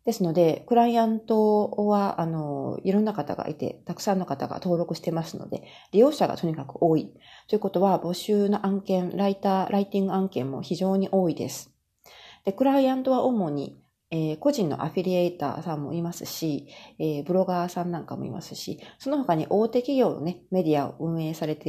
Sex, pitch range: female, 155-205 Hz